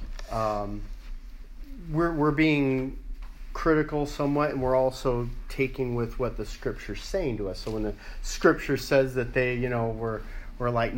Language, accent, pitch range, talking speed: English, American, 115-150 Hz, 160 wpm